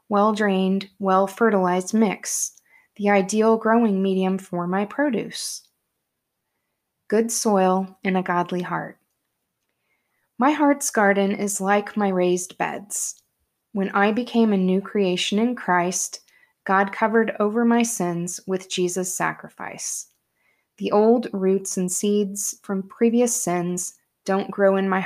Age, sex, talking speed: 20-39, female, 125 wpm